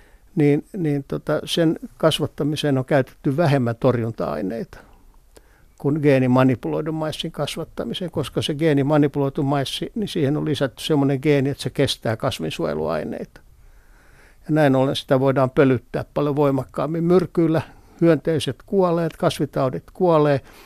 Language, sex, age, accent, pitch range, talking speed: Finnish, male, 60-79, native, 135-155 Hz, 115 wpm